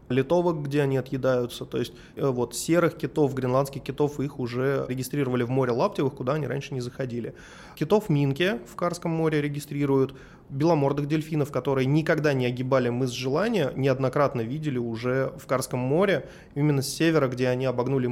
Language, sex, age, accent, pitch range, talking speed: Russian, male, 20-39, native, 125-150 Hz, 160 wpm